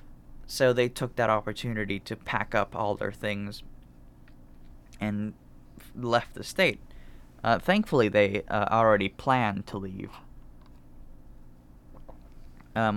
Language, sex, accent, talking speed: English, male, American, 110 wpm